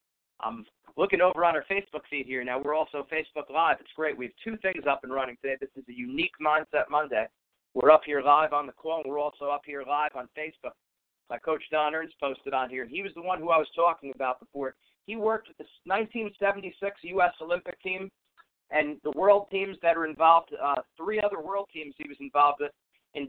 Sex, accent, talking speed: male, American, 220 wpm